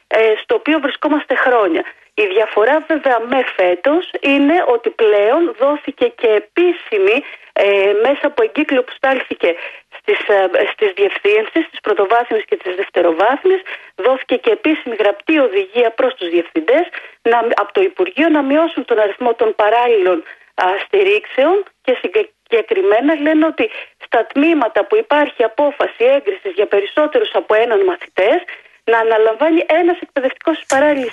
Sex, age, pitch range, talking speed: female, 40-59, 235-375 Hz, 135 wpm